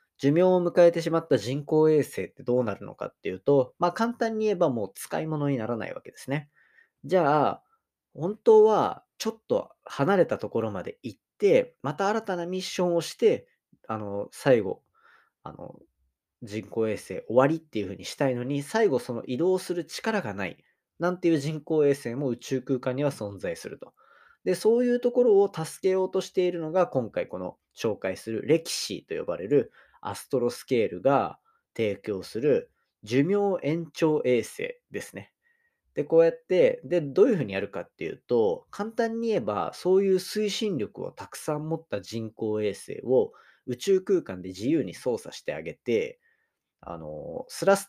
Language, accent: Japanese, native